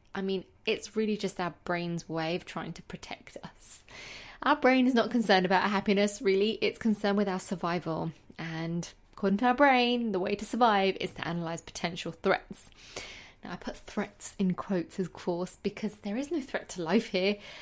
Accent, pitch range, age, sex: British, 175-230 Hz, 20-39, female